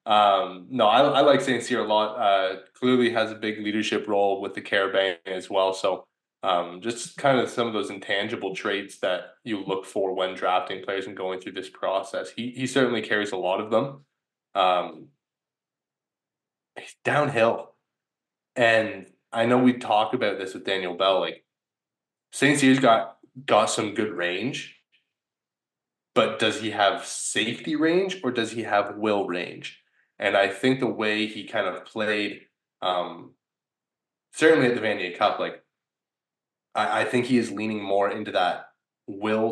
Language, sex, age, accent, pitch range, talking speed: English, male, 20-39, American, 100-125 Hz, 165 wpm